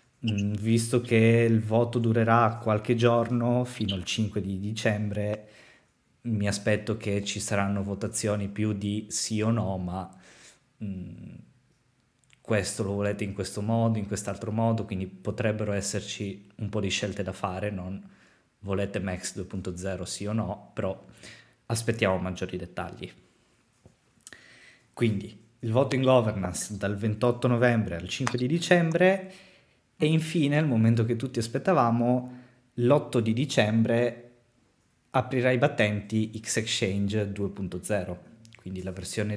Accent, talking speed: native, 130 wpm